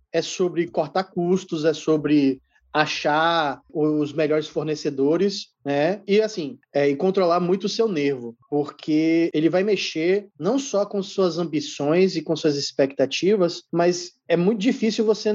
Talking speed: 150 wpm